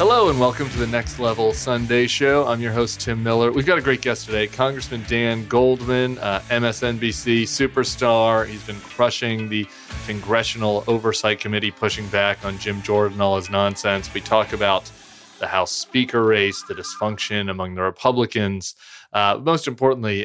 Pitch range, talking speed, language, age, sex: 100-135 Hz, 165 wpm, English, 30-49, male